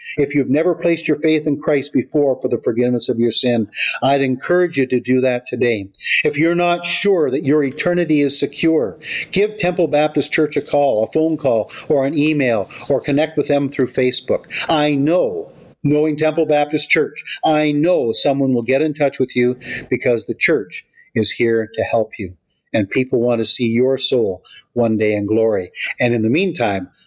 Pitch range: 125-150 Hz